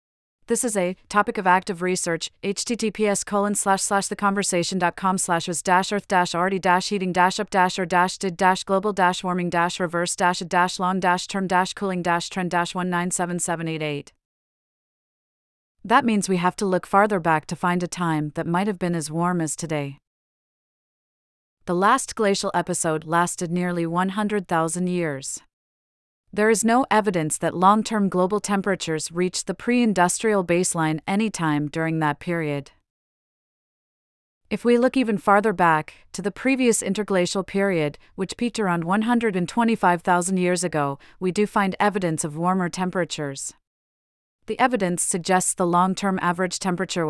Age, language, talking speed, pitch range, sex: 30-49, English, 155 wpm, 170-200 Hz, female